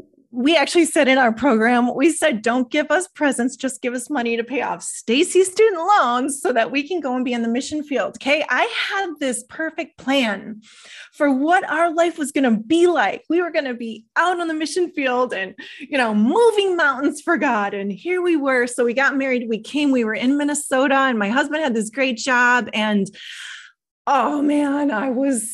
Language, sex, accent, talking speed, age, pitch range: English, female, American, 215 wpm, 30-49, 230-305 Hz